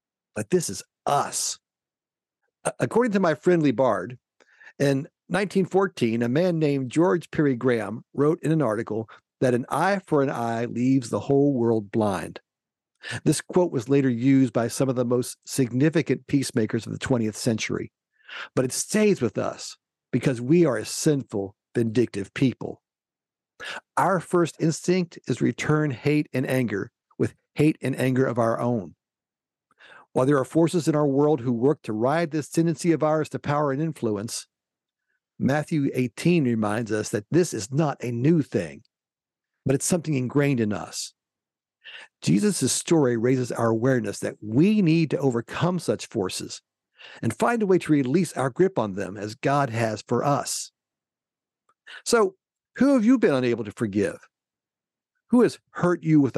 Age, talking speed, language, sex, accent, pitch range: 50-69, 160 wpm, English, male, American, 120-160 Hz